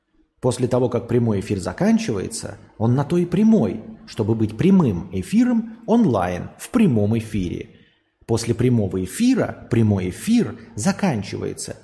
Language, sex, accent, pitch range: Russian, male, native, 105-145 Hz